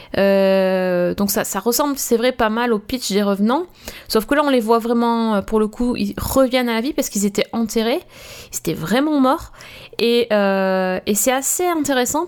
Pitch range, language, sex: 205-260 Hz, French, female